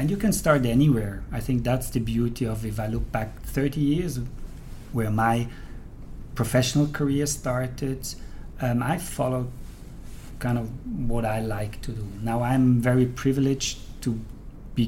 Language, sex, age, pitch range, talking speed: English, male, 40-59, 115-130 Hz, 155 wpm